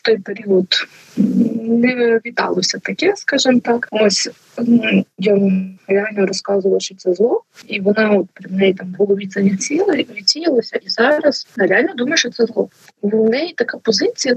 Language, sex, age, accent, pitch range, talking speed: Ukrainian, female, 20-39, native, 195-235 Hz, 155 wpm